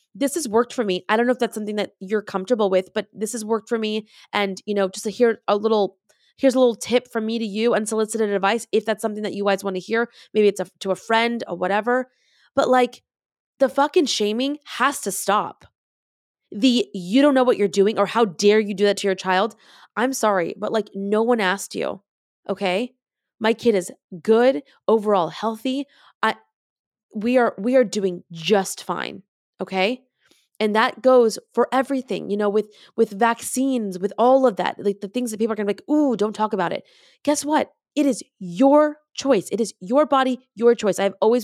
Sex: female